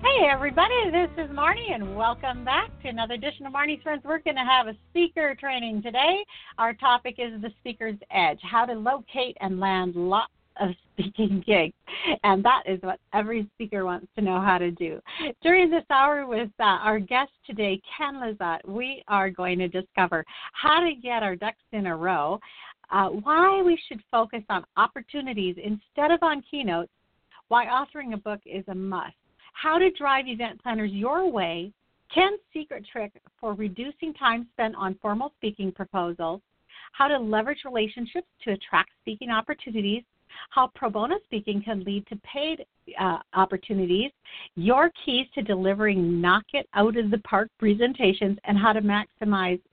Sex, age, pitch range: female, 50-69, 195-275 Hz